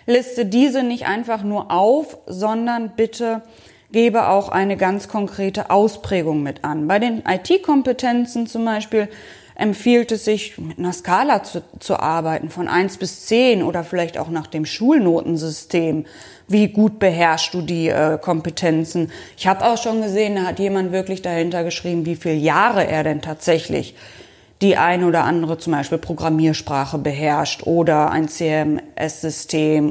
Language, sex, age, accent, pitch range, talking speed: German, female, 20-39, German, 165-220 Hz, 150 wpm